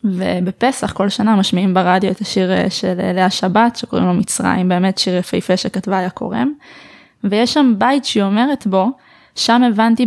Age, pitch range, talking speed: 20-39, 195-245 Hz, 160 wpm